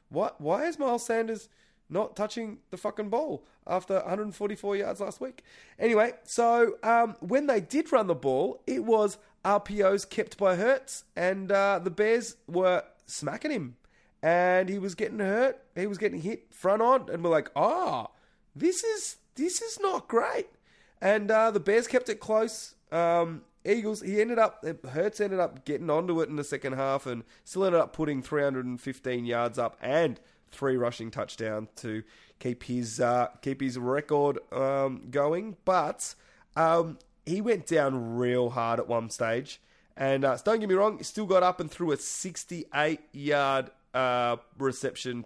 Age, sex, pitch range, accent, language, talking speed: 20-39, male, 125-215 Hz, Australian, English, 175 wpm